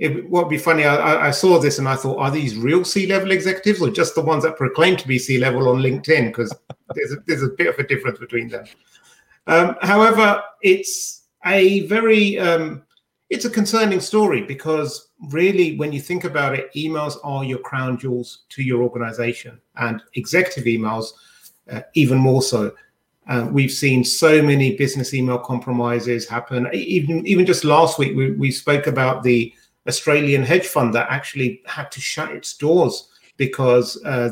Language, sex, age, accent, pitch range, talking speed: English, male, 40-59, British, 120-160 Hz, 175 wpm